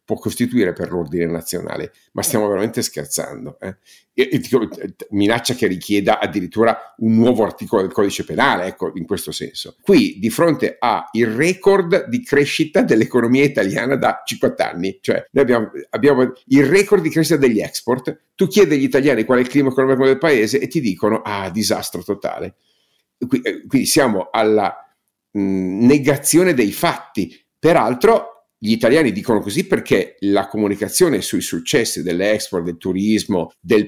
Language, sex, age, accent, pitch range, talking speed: Italian, male, 50-69, native, 100-135 Hz, 145 wpm